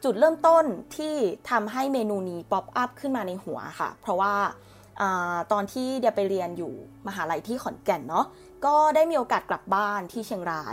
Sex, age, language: female, 20-39, Thai